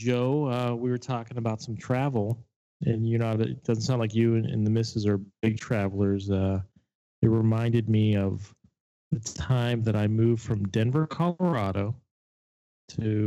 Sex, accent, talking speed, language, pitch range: male, American, 165 wpm, English, 105-125 Hz